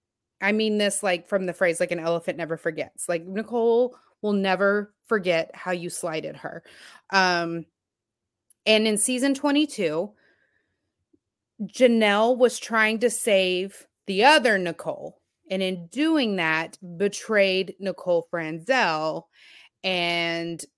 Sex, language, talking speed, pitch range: female, English, 120 wpm, 170-205 Hz